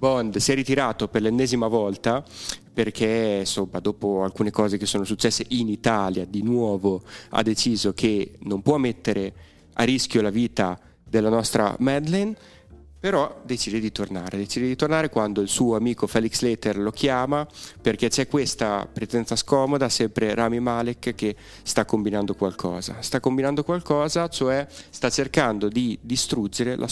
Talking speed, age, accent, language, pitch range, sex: 150 wpm, 30-49, native, Italian, 105-130 Hz, male